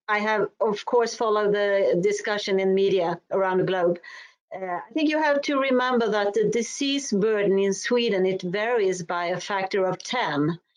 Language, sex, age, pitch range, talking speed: English, female, 40-59, 180-215 Hz, 180 wpm